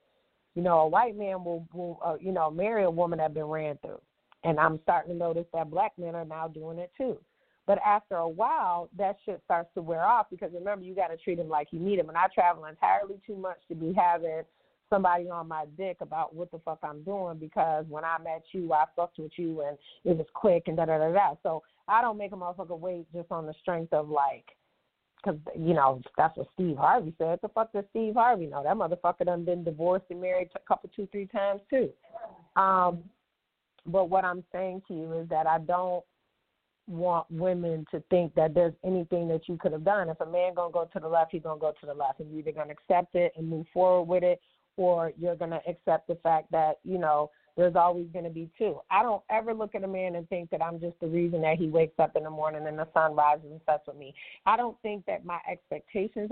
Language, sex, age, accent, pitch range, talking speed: English, female, 30-49, American, 160-190 Hz, 245 wpm